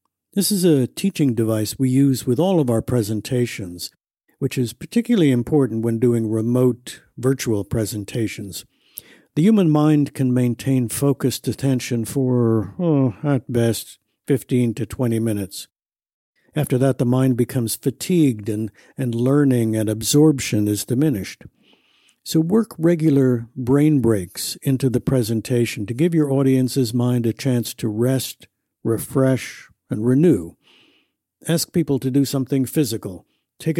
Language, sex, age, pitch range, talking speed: English, male, 60-79, 110-145 Hz, 135 wpm